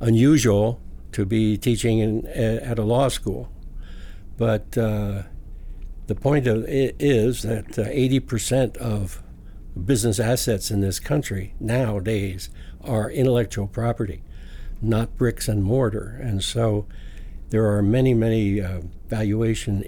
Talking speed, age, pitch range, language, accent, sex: 125 wpm, 60-79, 95-115 Hz, English, American, male